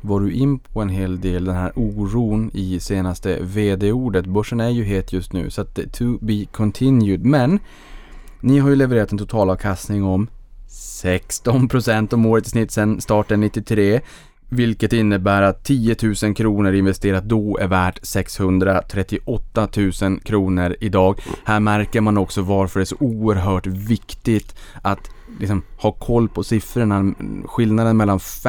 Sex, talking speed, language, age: male, 150 wpm, Swedish, 20-39